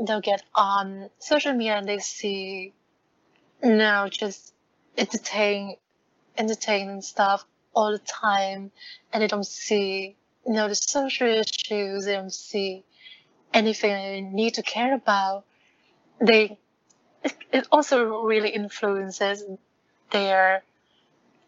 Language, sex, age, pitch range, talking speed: Vietnamese, female, 30-49, 200-220 Hz, 115 wpm